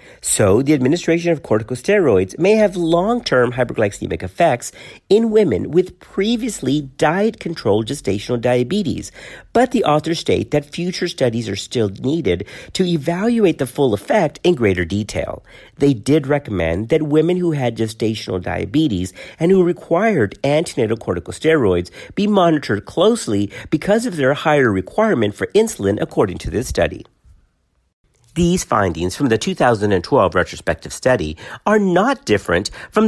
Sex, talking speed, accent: male, 135 wpm, American